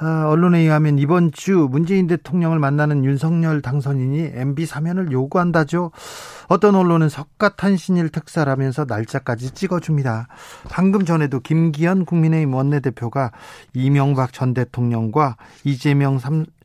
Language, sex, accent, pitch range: Korean, male, native, 135-175 Hz